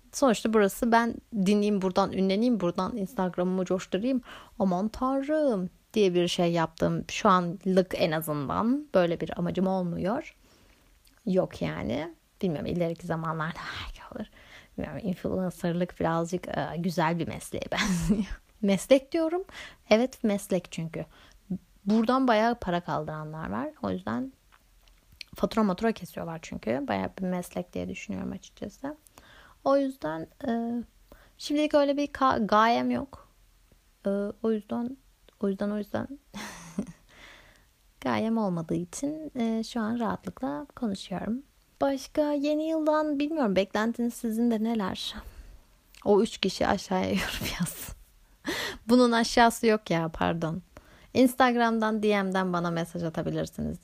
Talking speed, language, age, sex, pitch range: 120 wpm, Turkish, 30-49, female, 180-235 Hz